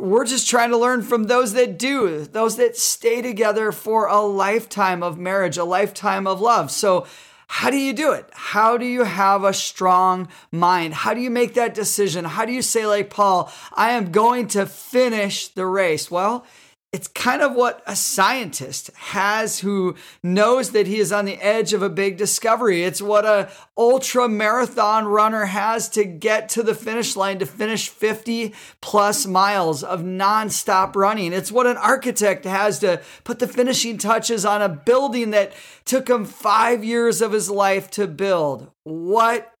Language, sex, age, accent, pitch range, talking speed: English, male, 30-49, American, 190-230 Hz, 180 wpm